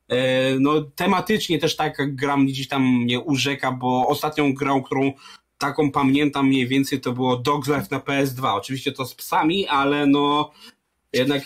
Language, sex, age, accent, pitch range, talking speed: Polish, male, 20-39, native, 140-200 Hz, 150 wpm